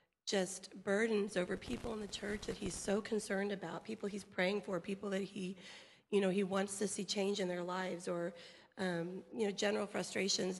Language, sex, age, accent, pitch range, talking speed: English, female, 40-59, American, 180-205 Hz, 200 wpm